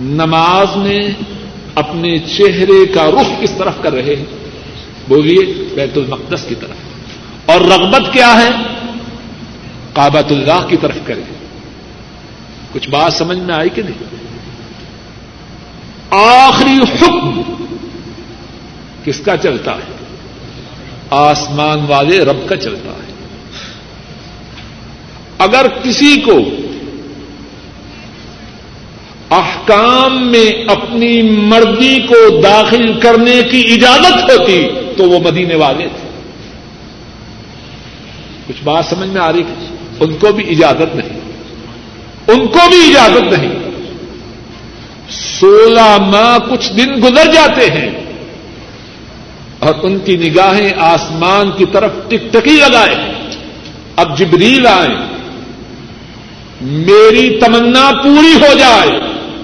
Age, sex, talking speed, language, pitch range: 60-79, male, 105 wpm, Urdu, 155-235 Hz